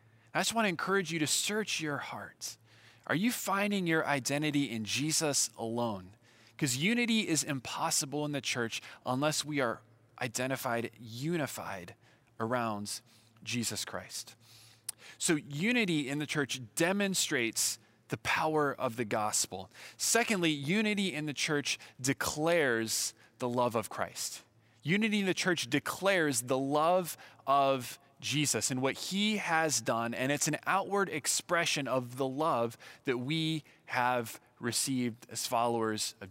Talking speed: 140 wpm